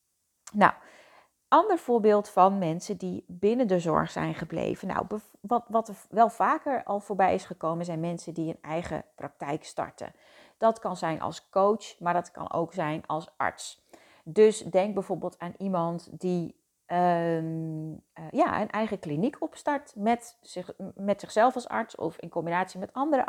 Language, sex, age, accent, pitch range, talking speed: Dutch, female, 30-49, Dutch, 170-225 Hz, 160 wpm